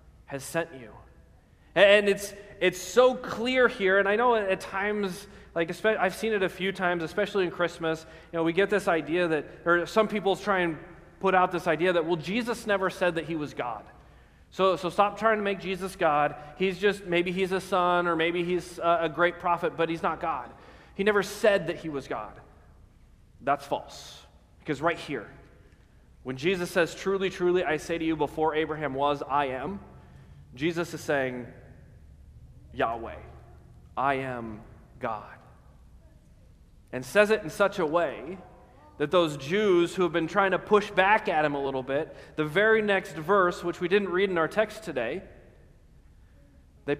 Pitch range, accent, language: 130-190 Hz, American, English